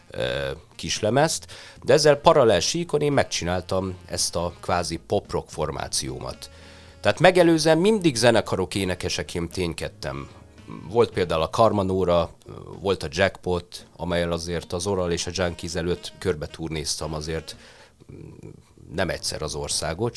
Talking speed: 120 wpm